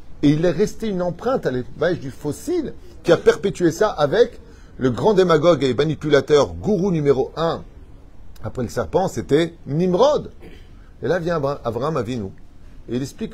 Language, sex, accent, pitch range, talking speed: French, male, French, 90-135 Hz, 160 wpm